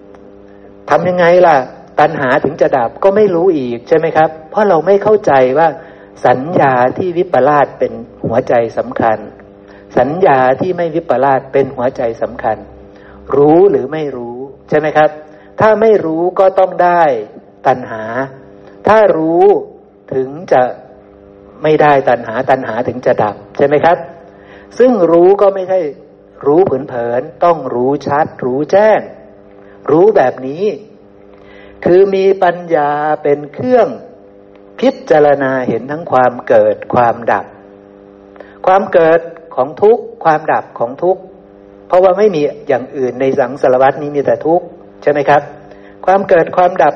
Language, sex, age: Thai, male, 60-79